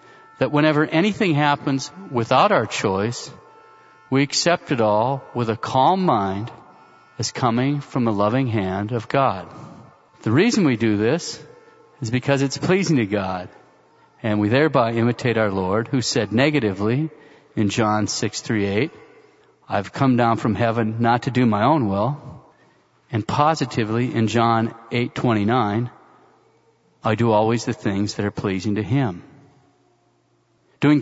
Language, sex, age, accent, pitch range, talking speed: English, male, 40-59, American, 110-145 Hz, 140 wpm